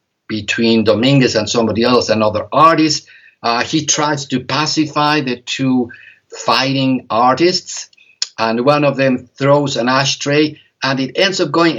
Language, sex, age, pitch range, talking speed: English, male, 50-69, 115-155 Hz, 145 wpm